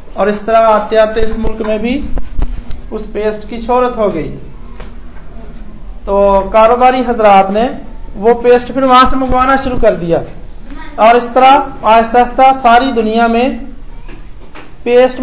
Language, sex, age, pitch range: Hindi, male, 40-59, 180-245 Hz